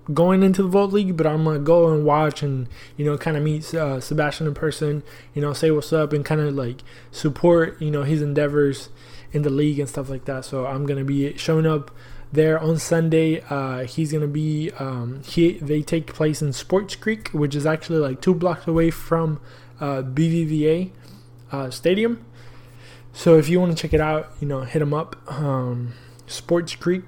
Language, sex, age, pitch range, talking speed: English, male, 20-39, 135-165 Hz, 210 wpm